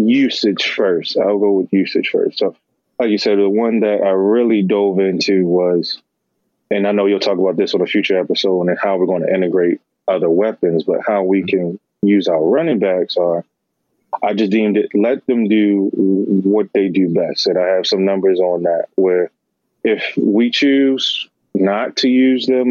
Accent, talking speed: American, 195 wpm